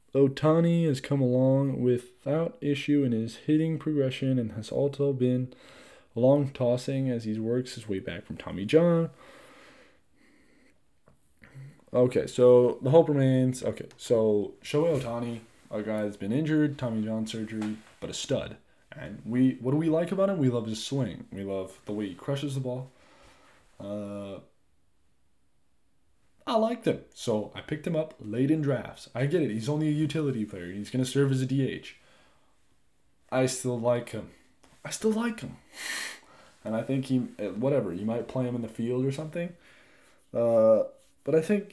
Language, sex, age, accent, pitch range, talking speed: English, male, 20-39, American, 115-150 Hz, 170 wpm